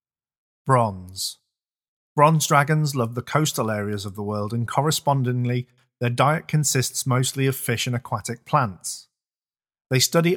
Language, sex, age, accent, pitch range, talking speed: English, male, 40-59, British, 115-145 Hz, 135 wpm